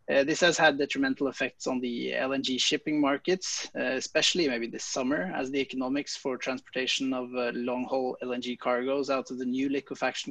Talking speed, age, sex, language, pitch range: 180 wpm, 20-39, male, English, 135-160 Hz